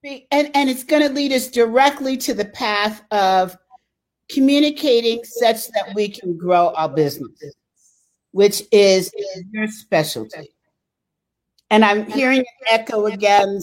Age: 50-69